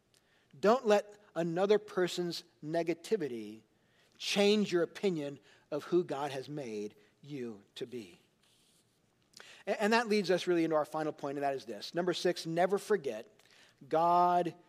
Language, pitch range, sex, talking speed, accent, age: English, 170-225 Hz, male, 140 wpm, American, 40-59